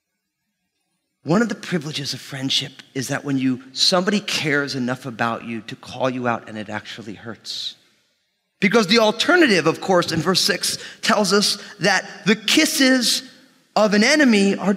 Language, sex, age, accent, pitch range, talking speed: English, male, 30-49, American, 145-220 Hz, 160 wpm